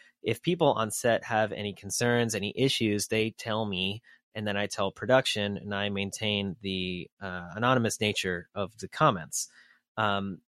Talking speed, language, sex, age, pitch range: 160 wpm, English, male, 30-49, 100-115 Hz